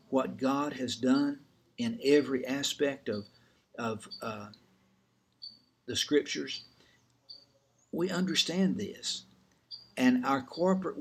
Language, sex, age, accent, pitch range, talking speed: English, male, 60-79, American, 115-170 Hz, 100 wpm